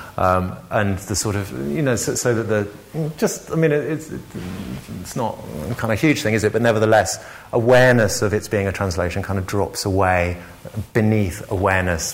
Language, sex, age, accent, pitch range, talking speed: English, male, 30-49, British, 90-110 Hz, 195 wpm